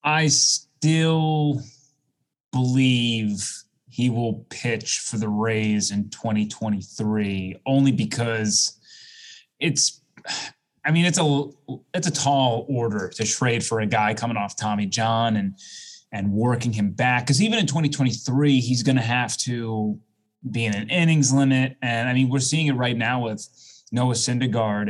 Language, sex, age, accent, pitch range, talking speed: English, male, 20-39, American, 110-135 Hz, 145 wpm